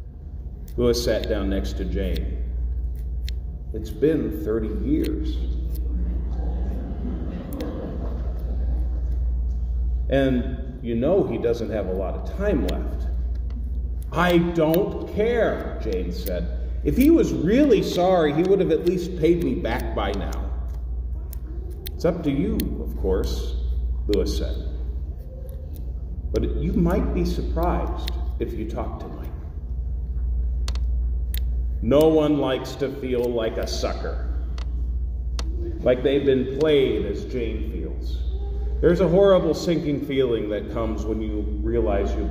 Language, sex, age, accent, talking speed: English, male, 40-59, American, 120 wpm